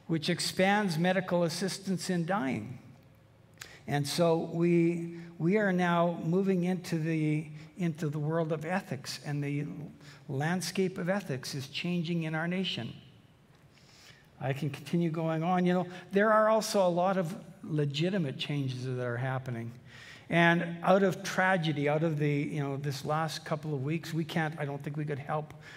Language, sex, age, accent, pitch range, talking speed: English, male, 60-79, American, 140-170 Hz, 165 wpm